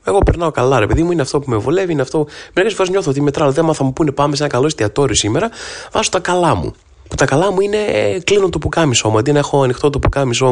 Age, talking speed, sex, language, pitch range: 20-39, 270 wpm, male, Greek, 120-165 Hz